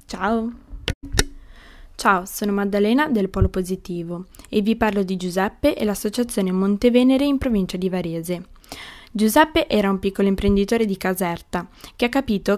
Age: 20-39